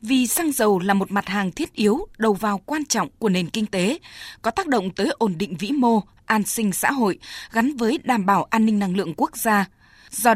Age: 20-39